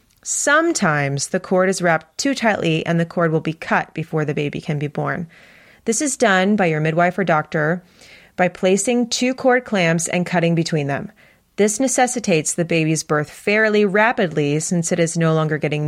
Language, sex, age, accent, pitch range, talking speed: English, female, 30-49, American, 160-210 Hz, 185 wpm